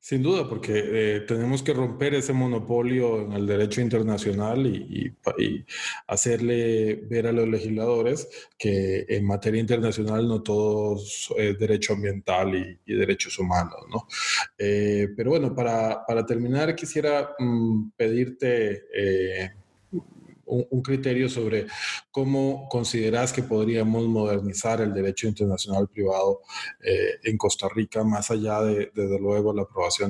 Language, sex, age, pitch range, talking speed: Spanish, male, 20-39, 100-115 Hz, 135 wpm